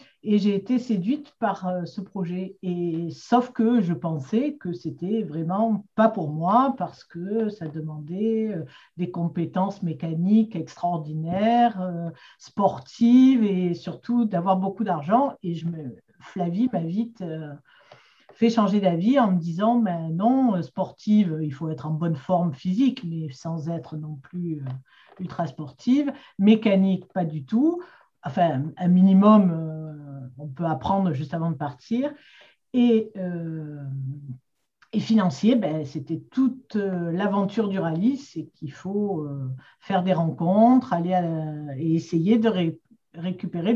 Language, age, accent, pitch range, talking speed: French, 50-69, French, 165-220 Hz, 135 wpm